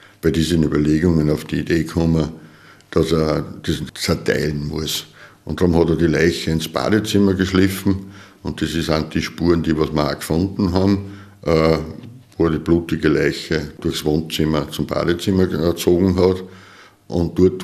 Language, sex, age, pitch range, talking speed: German, male, 60-79, 80-95 Hz, 155 wpm